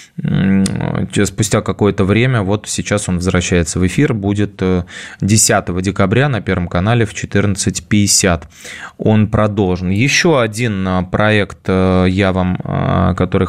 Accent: native